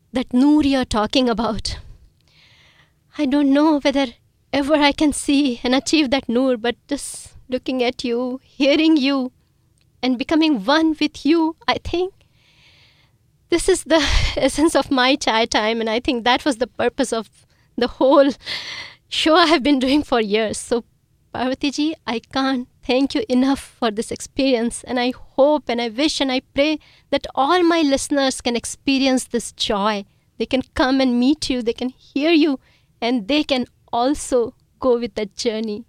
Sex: female